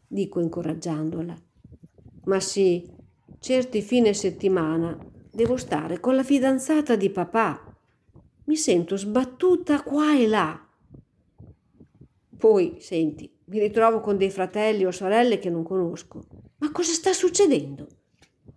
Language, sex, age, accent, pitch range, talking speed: Italian, female, 50-69, native, 170-220 Hz, 115 wpm